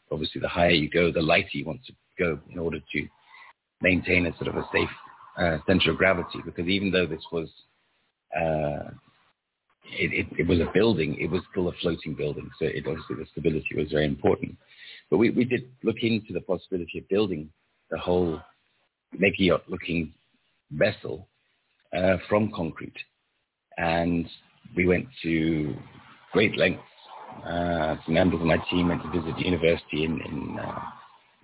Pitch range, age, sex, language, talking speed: 80-95 Hz, 50-69, male, English, 165 wpm